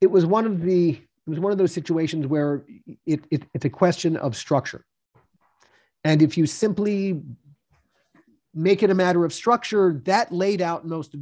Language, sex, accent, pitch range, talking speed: English, male, American, 150-185 Hz, 180 wpm